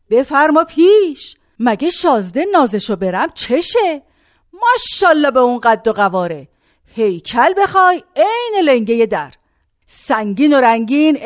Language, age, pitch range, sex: Persian, 50-69, 220-315 Hz, female